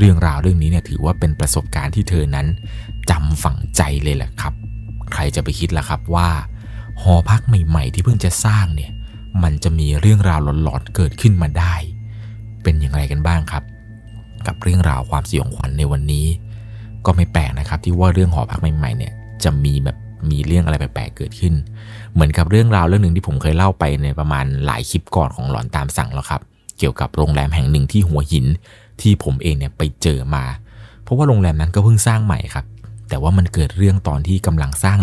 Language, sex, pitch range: Thai, male, 75-110 Hz